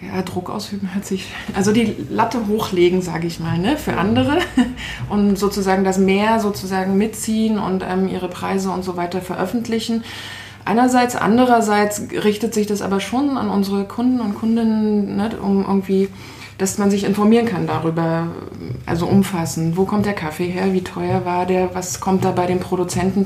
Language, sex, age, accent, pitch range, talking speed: German, female, 20-39, German, 180-210 Hz, 170 wpm